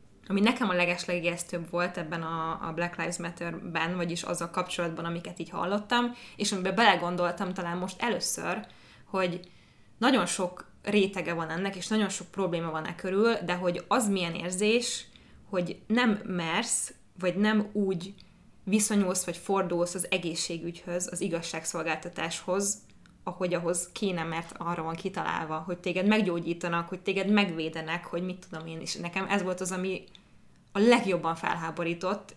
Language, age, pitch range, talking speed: Hungarian, 20-39, 170-200 Hz, 150 wpm